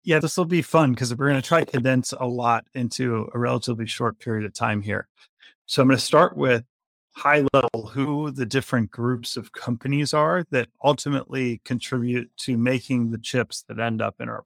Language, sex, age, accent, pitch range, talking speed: English, male, 30-49, American, 115-135 Hz, 205 wpm